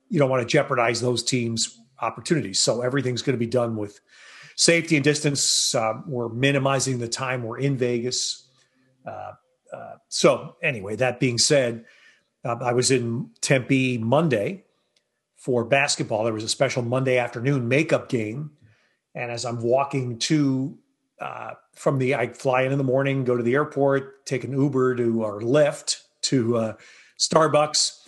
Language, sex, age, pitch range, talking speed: English, male, 40-59, 120-140 Hz, 160 wpm